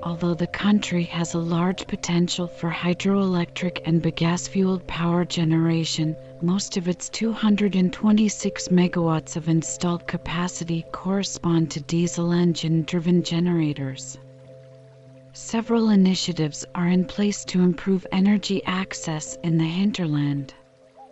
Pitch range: 160-185 Hz